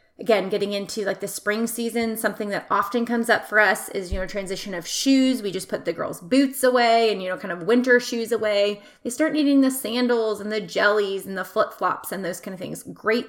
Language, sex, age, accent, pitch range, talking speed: English, female, 30-49, American, 200-235 Hz, 235 wpm